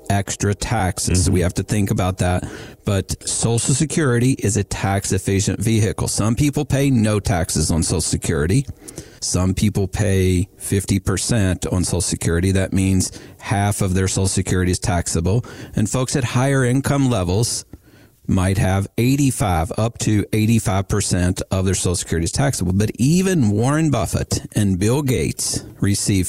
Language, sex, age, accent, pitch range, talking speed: English, male, 50-69, American, 95-120 Hz, 150 wpm